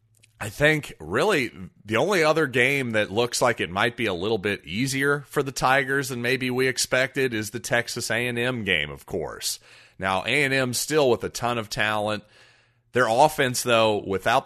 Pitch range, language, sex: 105-130 Hz, English, male